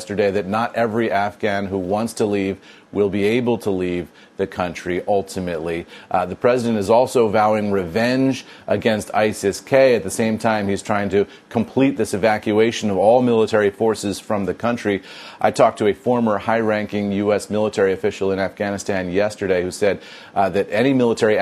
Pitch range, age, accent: 95-110 Hz, 30-49, American